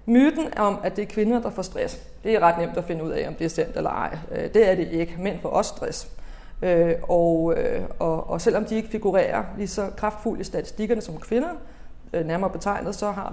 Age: 30-49